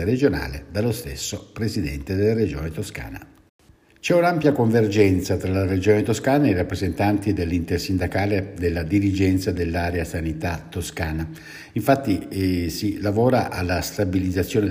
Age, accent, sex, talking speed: 60-79, native, male, 120 wpm